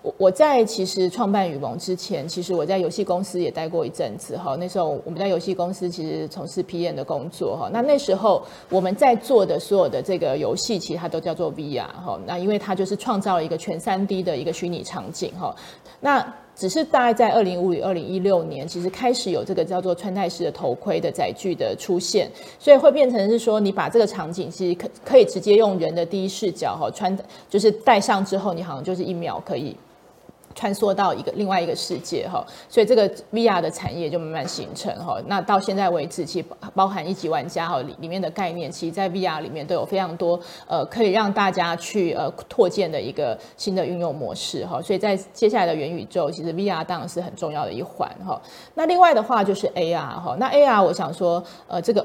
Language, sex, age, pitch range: Chinese, female, 30-49, 175-205 Hz